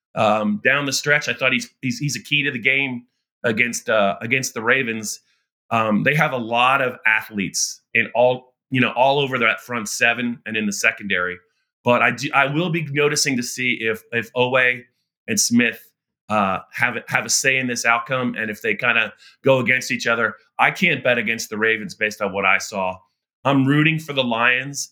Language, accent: English, American